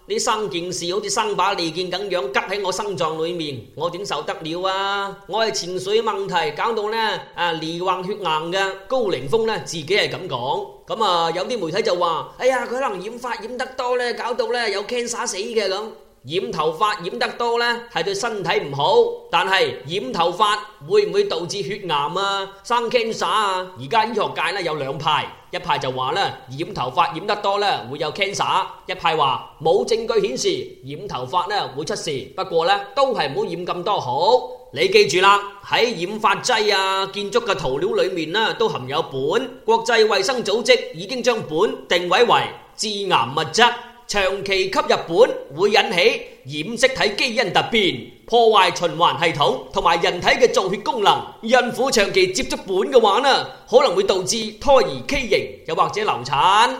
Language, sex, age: Chinese, male, 30-49